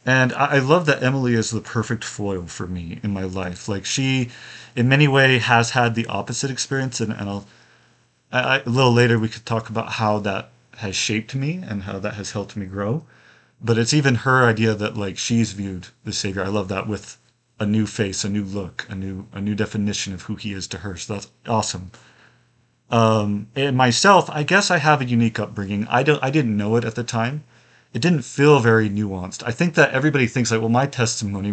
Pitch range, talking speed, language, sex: 105-125 Hz, 220 wpm, English, male